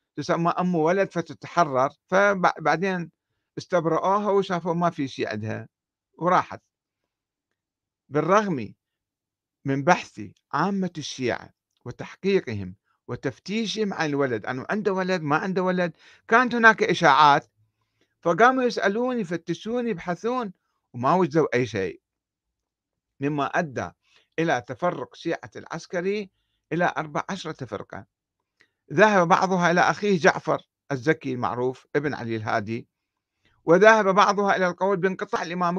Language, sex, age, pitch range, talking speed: Arabic, male, 50-69, 130-190 Hz, 105 wpm